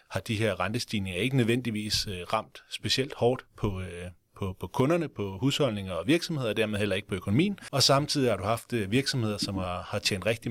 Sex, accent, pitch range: male, native, 100-120 Hz